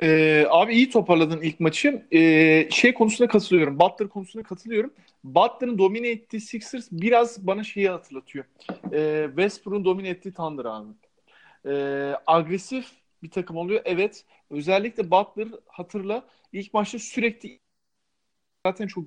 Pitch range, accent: 165-225 Hz, native